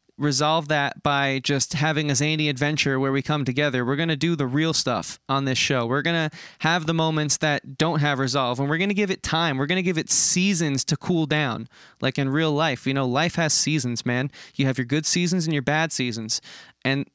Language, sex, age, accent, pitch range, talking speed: English, male, 20-39, American, 140-170 Hz, 240 wpm